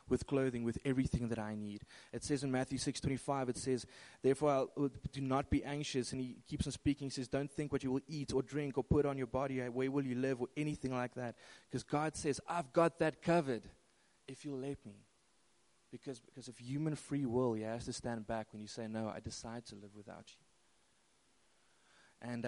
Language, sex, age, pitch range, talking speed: English, male, 20-39, 110-130 Hz, 220 wpm